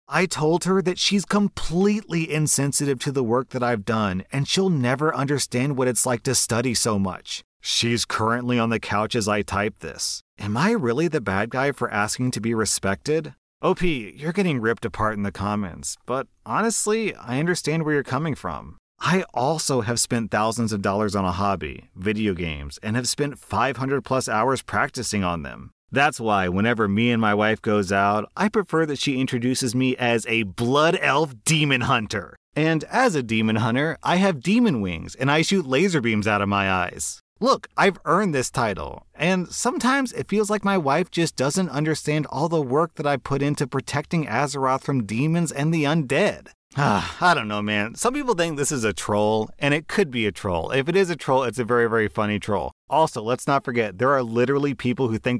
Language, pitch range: English, 110-150 Hz